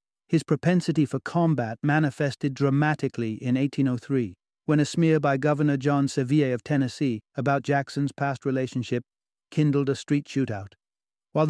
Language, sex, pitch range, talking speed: English, male, 130-155 Hz, 135 wpm